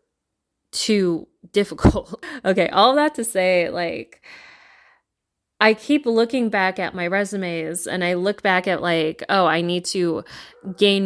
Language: English